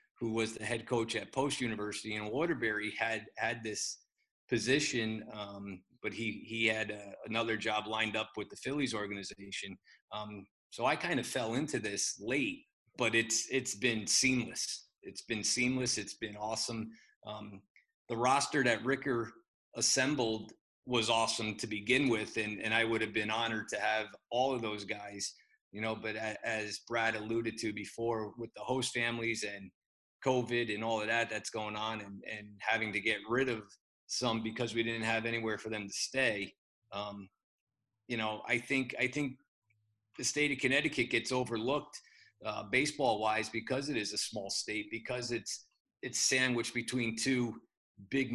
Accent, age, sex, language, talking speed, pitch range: American, 30-49, male, English, 170 wpm, 110-120 Hz